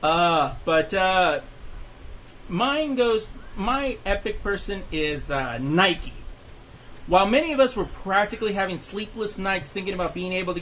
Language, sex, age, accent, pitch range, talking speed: English, male, 30-49, American, 145-195 Hz, 140 wpm